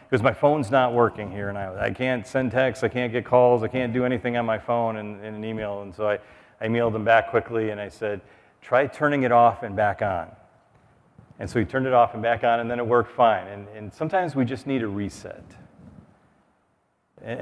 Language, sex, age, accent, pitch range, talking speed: English, male, 40-59, American, 105-125 Hz, 240 wpm